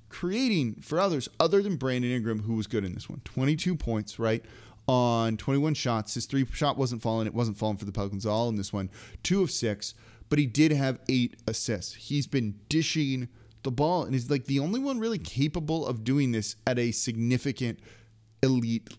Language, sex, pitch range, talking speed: English, male, 110-150 Hz, 200 wpm